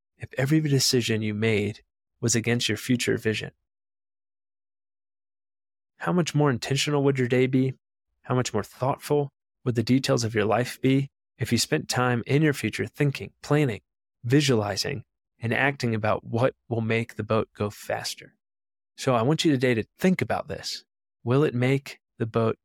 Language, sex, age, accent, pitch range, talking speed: English, male, 20-39, American, 110-130 Hz, 165 wpm